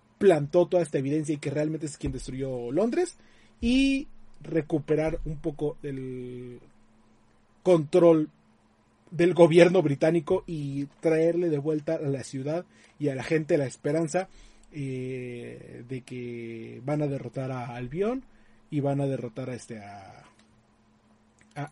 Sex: male